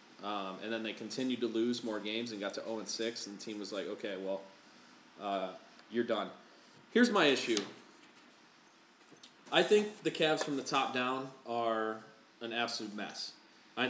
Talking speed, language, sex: 175 wpm, English, male